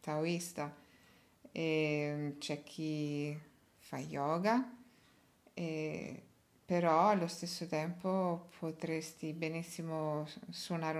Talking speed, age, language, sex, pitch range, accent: 75 wpm, 50-69, Italian, female, 155-185 Hz, native